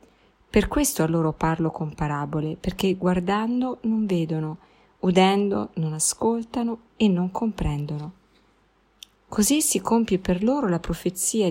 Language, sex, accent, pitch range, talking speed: Italian, female, native, 165-215 Hz, 125 wpm